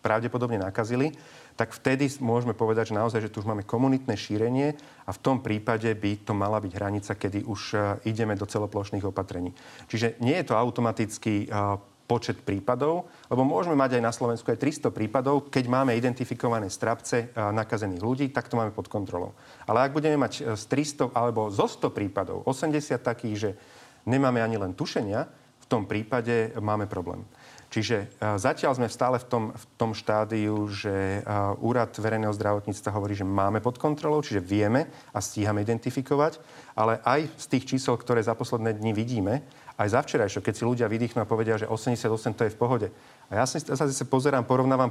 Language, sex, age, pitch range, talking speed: Slovak, male, 40-59, 105-130 Hz, 180 wpm